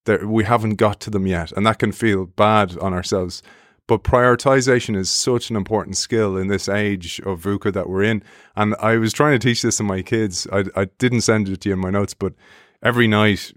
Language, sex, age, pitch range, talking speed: English, male, 30-49, 95-115 Hz, 225 wpm